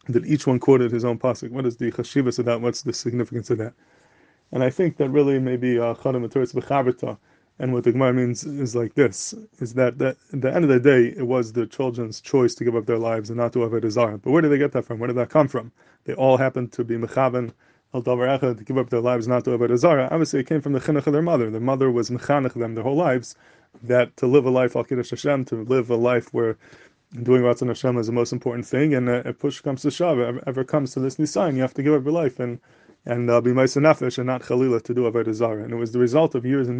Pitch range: 120-140 Hz